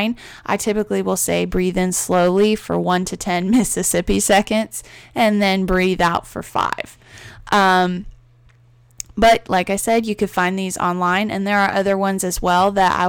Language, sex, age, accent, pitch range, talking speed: English, female, 10-29, American, 180-210 Hz, 170 wpm